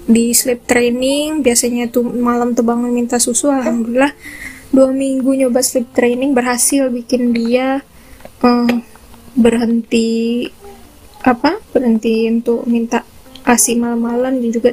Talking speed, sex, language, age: 115 wpm, female, Indonesian, 10-29